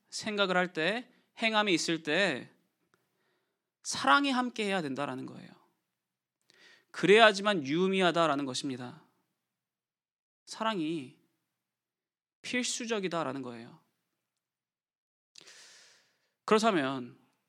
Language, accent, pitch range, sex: Korean, native, 145-220 Hz, male